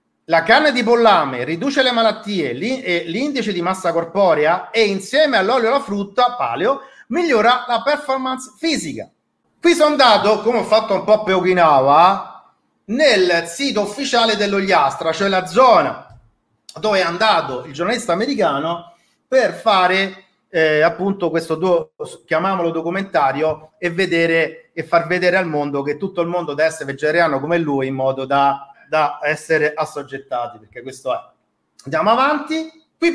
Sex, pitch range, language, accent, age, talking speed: male, 165-245 Hz, Italian, native, 40-59, 150 wpm